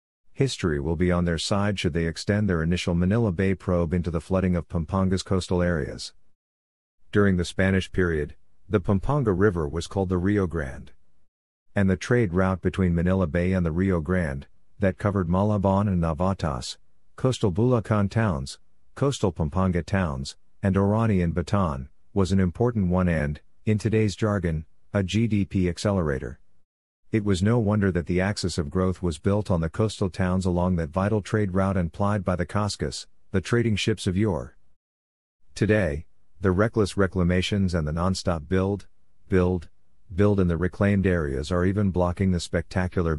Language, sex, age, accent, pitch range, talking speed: English, male, 50-69, American, 85-100 Hz, 165 wpm